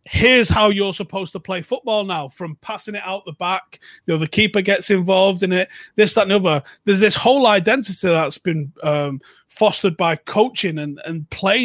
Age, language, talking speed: 30-49, English, 200 wpm